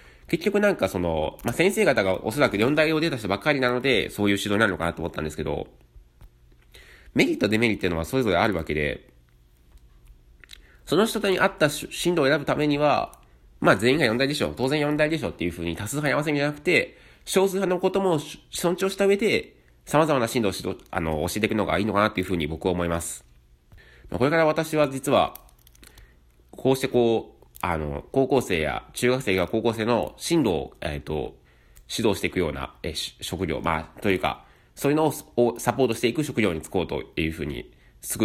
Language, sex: Japanese, male